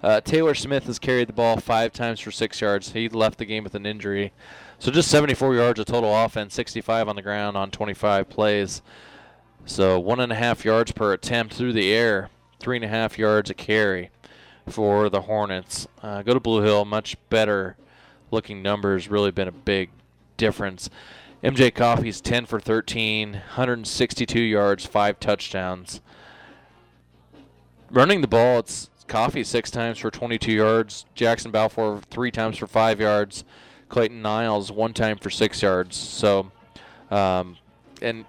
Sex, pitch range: male, 100-115 Hz